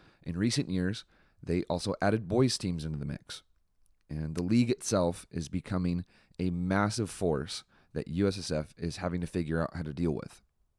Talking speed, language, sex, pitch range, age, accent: 170 wpm, English, male, 80-95 Hz, 30-49, American